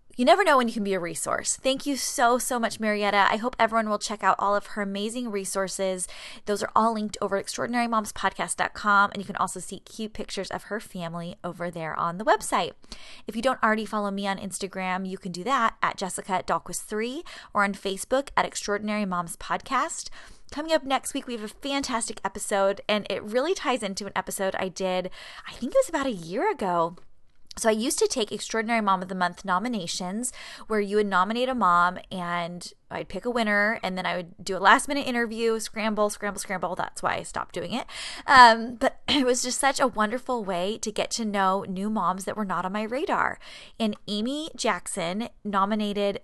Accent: American